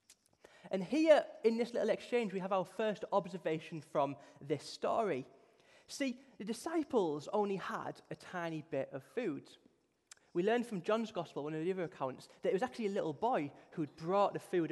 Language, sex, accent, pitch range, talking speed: English, male, British, 150-215 Hz, 190 wpm